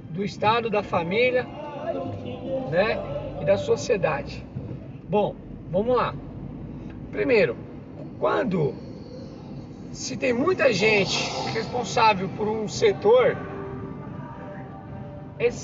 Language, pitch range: Portuguese, 170-235 Hz